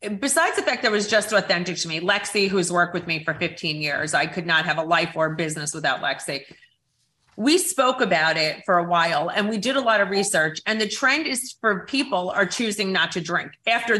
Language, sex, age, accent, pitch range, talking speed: English, female, 30-49, American, 160-205 Hz, 230 wpm